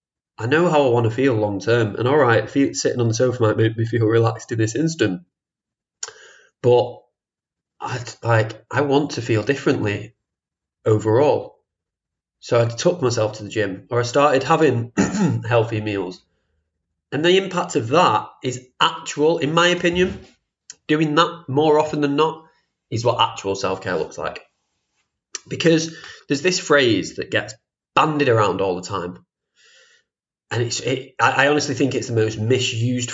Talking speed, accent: 160 wpm, British